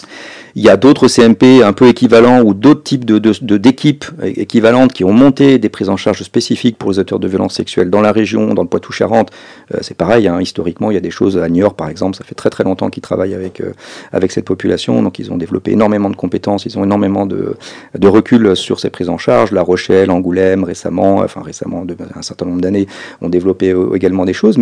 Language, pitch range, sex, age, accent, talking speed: French, 95-125 Hz, male, 40-59, French, 235 wpm